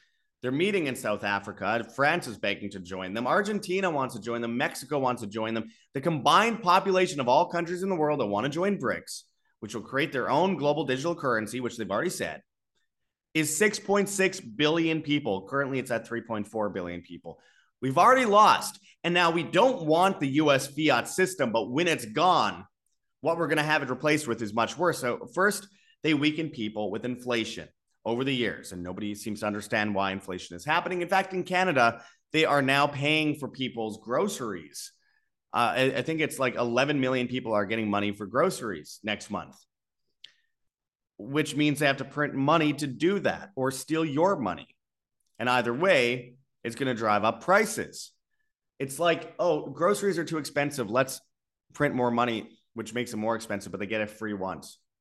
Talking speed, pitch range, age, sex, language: 190 wpm, 115-170 Hz, 30-49, male, English